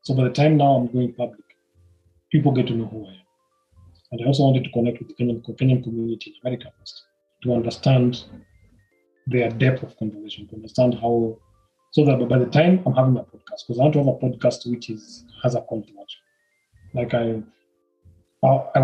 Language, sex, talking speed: Swahili, male, 195 wpm